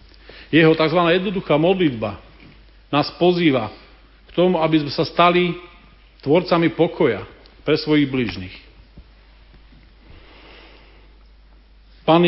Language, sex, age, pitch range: Slovak, male, 50-69, 125-185 Hz